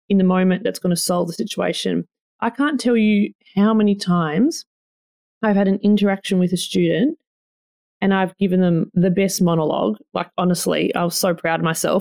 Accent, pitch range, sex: Australian, 185-230 Hz, female